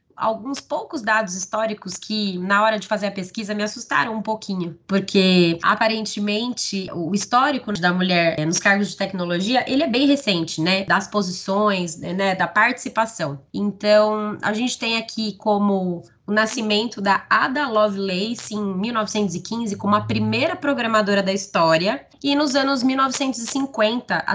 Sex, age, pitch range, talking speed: female, 20-39, 190-230 Hz, 145 wpm